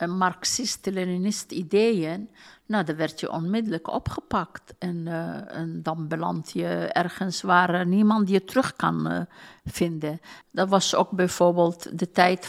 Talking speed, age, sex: 125 wpm, 60-79, female